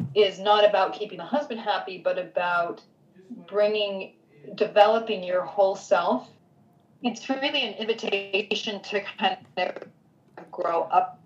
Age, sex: 30-49, female